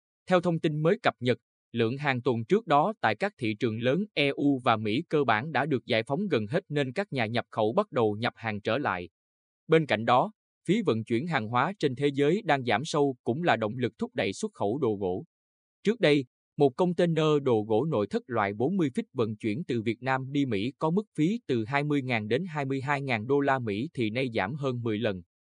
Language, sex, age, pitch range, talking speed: Vietnamese, male, 20-39, 115-155 Hz, 225 wpm